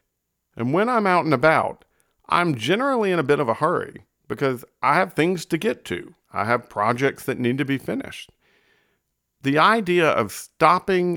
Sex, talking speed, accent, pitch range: male, 175 wpm, American, 110-140 Hz